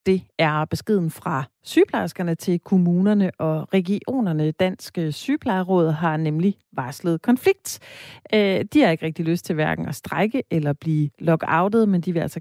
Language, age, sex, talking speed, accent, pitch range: Danish, 40-59, female, 150 wpm, native, 160-205 Hz